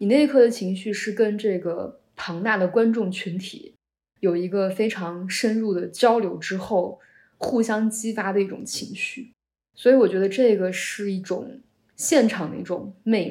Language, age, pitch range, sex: Chinese, 20-39, 185-235 Hz, female